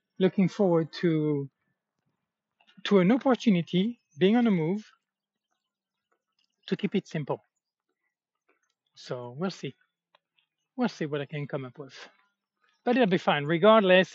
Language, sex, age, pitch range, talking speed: English, male, 40-59, 135-180 Hz, 125 wpm